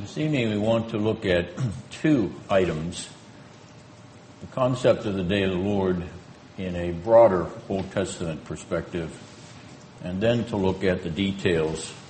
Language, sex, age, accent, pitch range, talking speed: English, male, 60-79, American, 95-115 Hz, 150 wpm